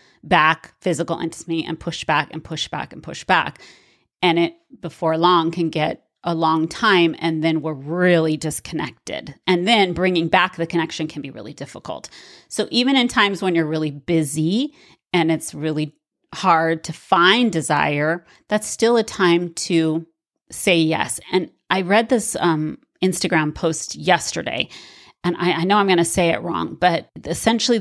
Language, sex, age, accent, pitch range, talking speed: English, female, 30-49, American, 165-210 Hz, 165 wpm